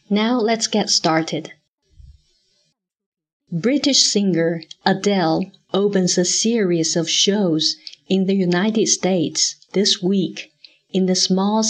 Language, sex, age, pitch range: Chinese, female, 50-69, 175-210 Hz